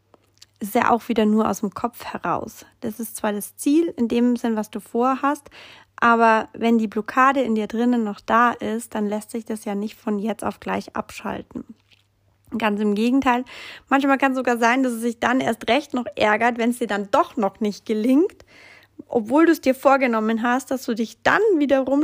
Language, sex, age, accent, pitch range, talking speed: German, female, 30-49, German, 220-275 Hz, 205 wpm